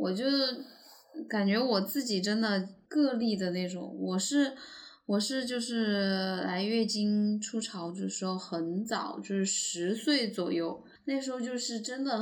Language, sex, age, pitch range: Chinese, female, 10-29, 185-230 Hz